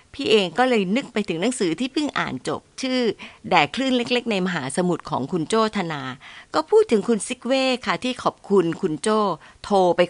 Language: Thai